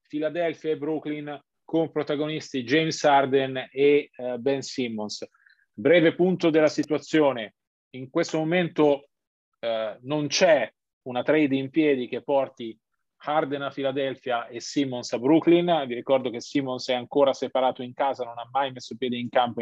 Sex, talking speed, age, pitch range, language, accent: male, 150 wpm, 40-59, 125-150 Hz, Italian, native